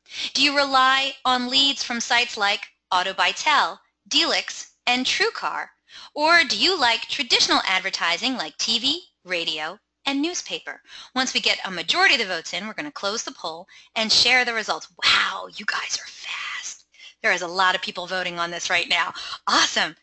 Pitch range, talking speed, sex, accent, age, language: 190-265 Hz, 175 wpm, female, American, 20-39, English